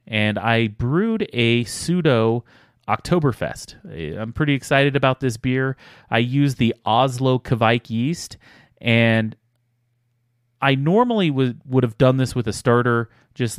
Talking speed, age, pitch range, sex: 135 wpm, 30-49, 110-135 Hz, male